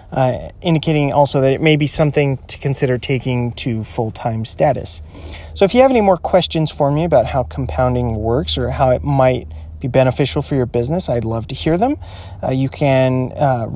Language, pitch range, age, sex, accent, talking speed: English, 125-165 Hz, 30-49, male, American, 200 wpm